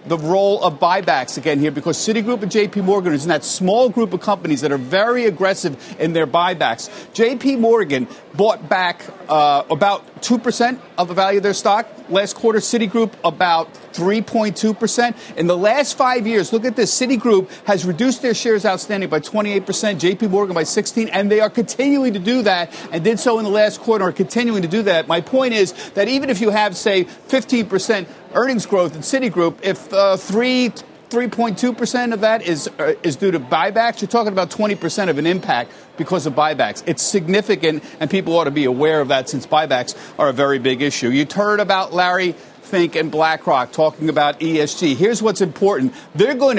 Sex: male